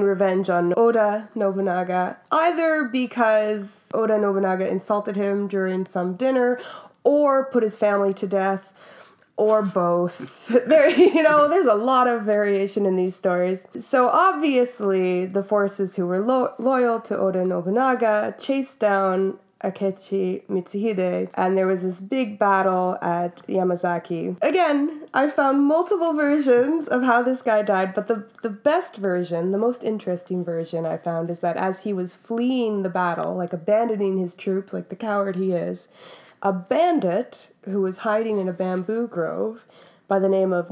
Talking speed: 155 wpm